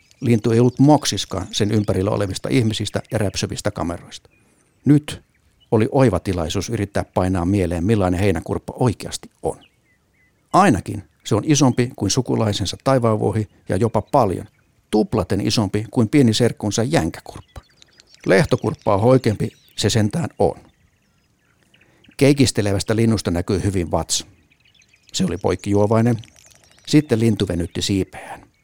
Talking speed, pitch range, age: 120 wpm, 95-115 Hz, 60-79